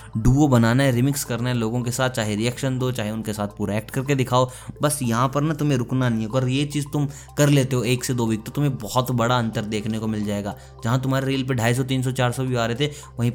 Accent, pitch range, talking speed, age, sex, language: native, 110-130 Hz, 275 wpm, 20-39, male, Hindi